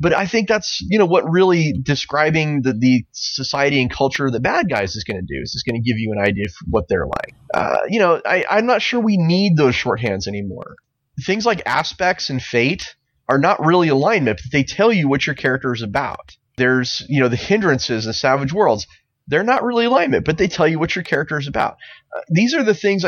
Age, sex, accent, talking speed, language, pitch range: 30-49, male, American, 235 wpm, English, 120-155 Hz